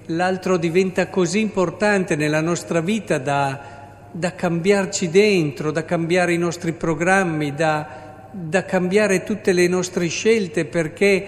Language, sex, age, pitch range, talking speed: Italian, male, 50-69, 140-185 Hz, 130 wpm